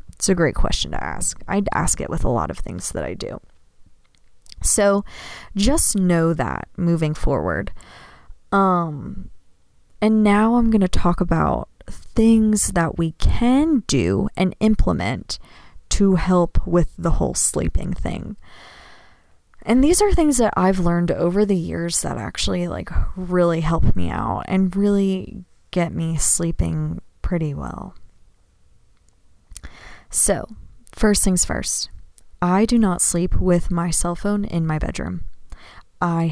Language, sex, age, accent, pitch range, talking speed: English, female, 20-39, American, 120-195 Hz, 140 wpm